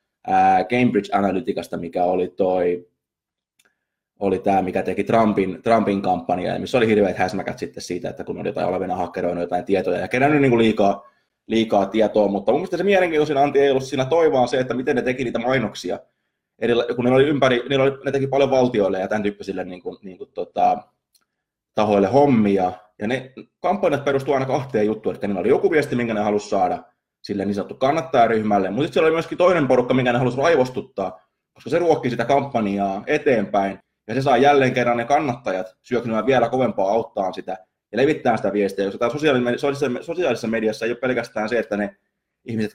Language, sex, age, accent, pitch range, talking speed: Finnish, male, 20-39, native, 100-135 Hz, 180 wpm